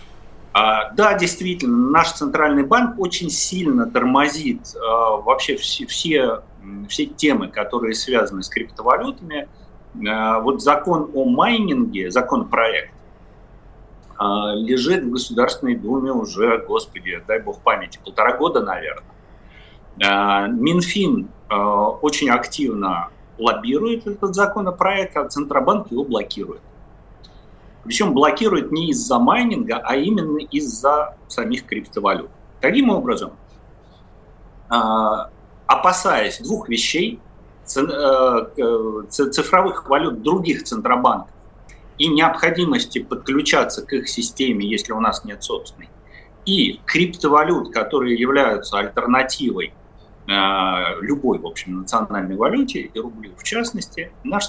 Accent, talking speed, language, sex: native, 95 wpm, Russian, male